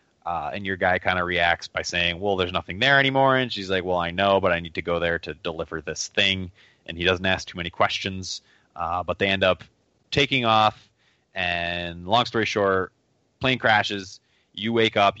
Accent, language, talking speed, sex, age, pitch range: American, English, 210 wpm, male, 20-39, 85-100 Hz